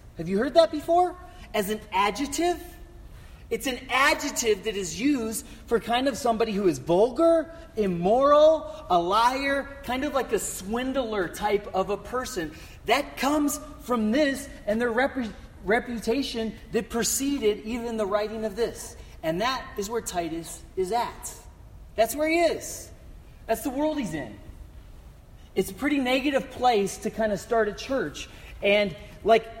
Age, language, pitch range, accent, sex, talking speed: 30-49, English, 190-270 Hz, American, male, 155 wpm